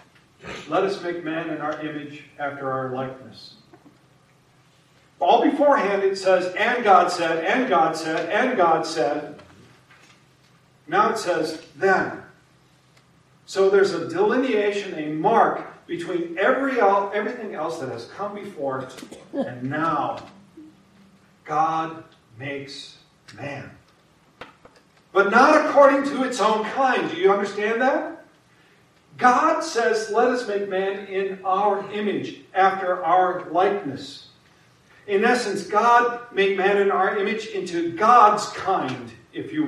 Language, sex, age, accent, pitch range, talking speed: English, male, 50-69, American, 155-215 Hz, 120 wpm